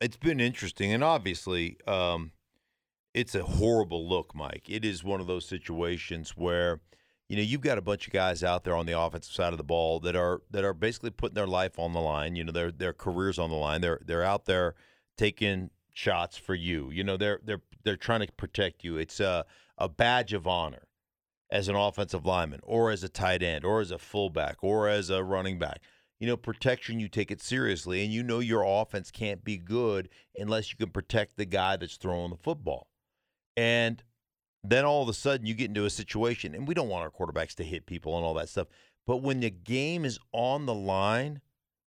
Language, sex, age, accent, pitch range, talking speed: English, male, 50-69, American, 90-115 Hz, 215 wpm